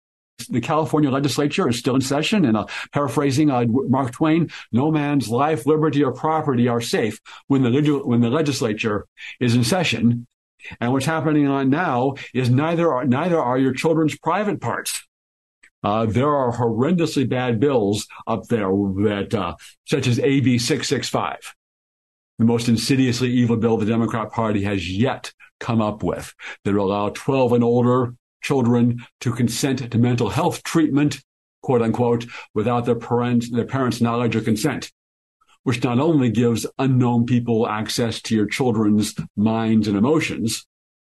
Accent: American